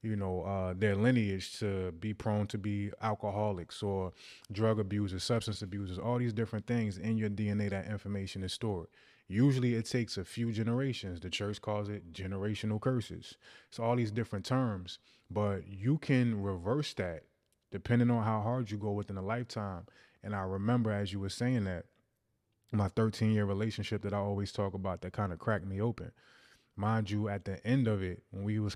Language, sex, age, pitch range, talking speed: English, male, 20-39, 100-115 Hz, 190 wpm